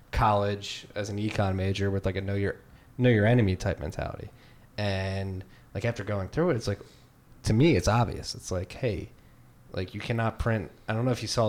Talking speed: 210 wpm